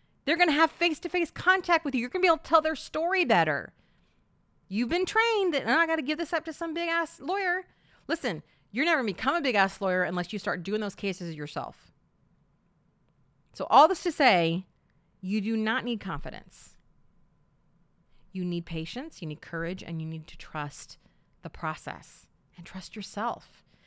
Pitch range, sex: 165-245 Hz, female